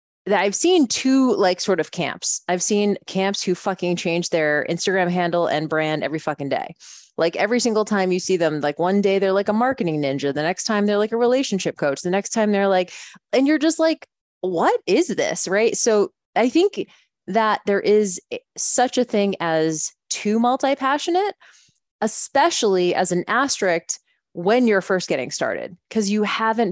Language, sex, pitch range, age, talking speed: English, female, 170-225 Hz, 20-39, 185 wpm